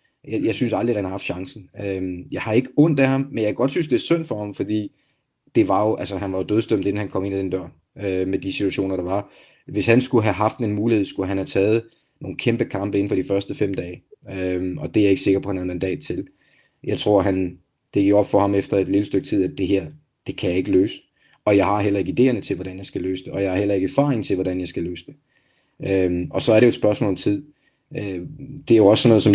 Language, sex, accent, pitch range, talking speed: Danish, male, native, 95-120 Hz, 280 wpm